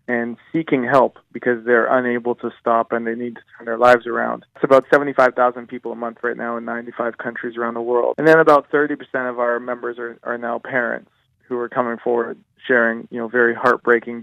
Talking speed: 210 wpm